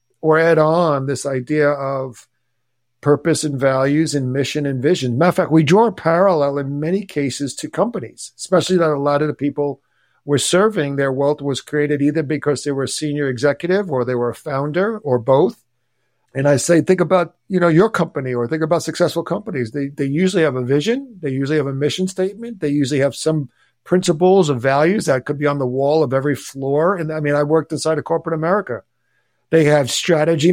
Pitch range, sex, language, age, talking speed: 140-170 Hz, male, English, 50-69, 210 wpm